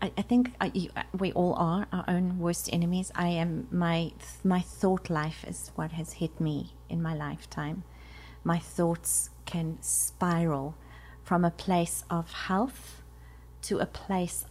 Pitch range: 155-190 Hz